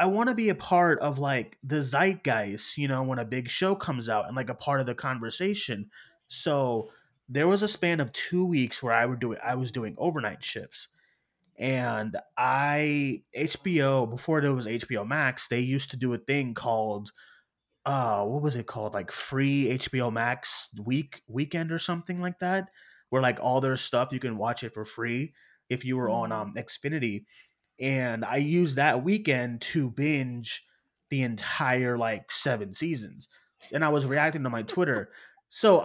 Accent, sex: American, male